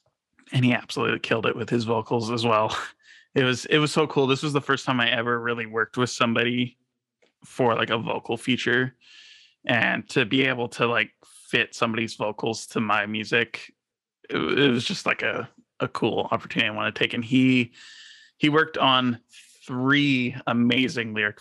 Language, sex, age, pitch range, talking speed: English, male, 20-39, 115-130 Hz, 180 wpm